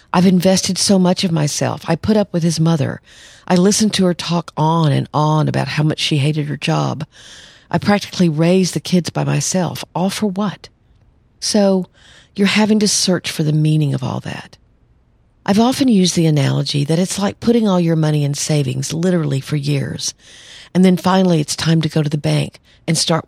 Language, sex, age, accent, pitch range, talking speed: English, female, 50-69, American, 145-180 Hz, 200 wpm